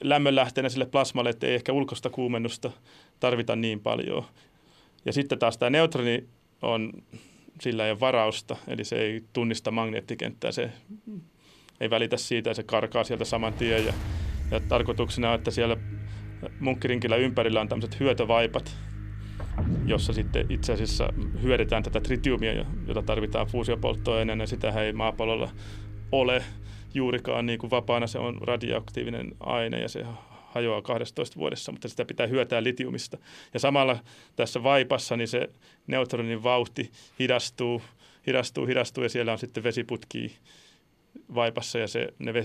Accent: native